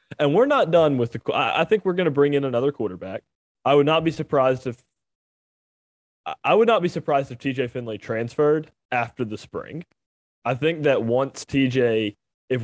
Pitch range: 115-145 Hz